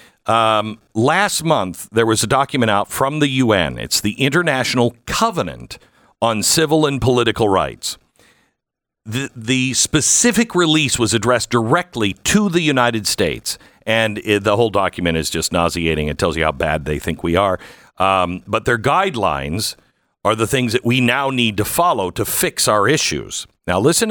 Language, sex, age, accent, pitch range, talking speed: English, male, 50-69, American, 105-155 Hz, 165 wpm